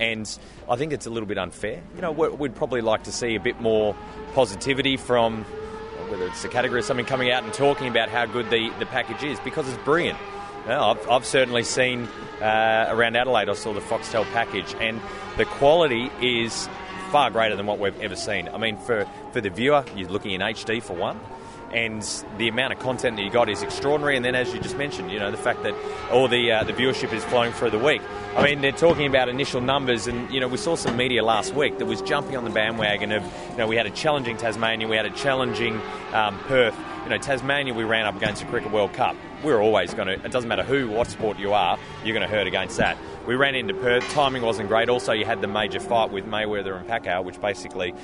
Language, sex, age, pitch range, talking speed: English, male, 30-49, 105-130 Hz, 240 wpm